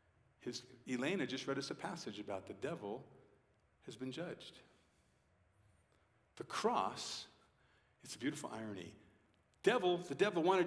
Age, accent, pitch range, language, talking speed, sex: 50-69, American, 105-130 Hz, English, 130 wpm, male